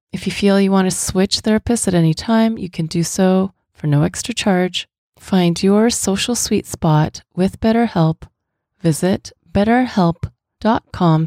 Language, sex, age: English, female, 30-49